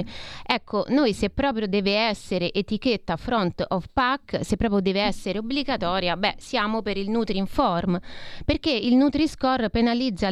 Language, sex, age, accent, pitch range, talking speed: Italian, female, 30-49, native, 190-235 Hz, 145 wpm